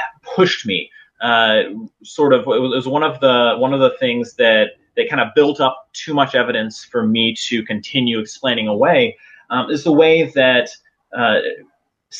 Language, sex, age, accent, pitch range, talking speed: English, male, 30-49, American, 120-160 Hz, 170 wpm